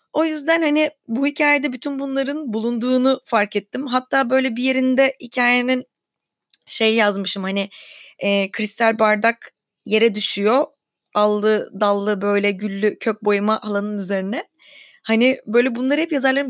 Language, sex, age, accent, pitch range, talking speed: Turkish, female, 20-39, native, 215-260 Hz, 130 wpm